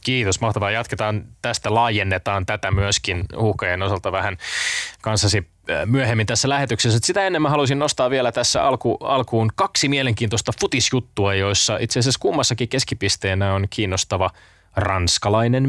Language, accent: Finnish, native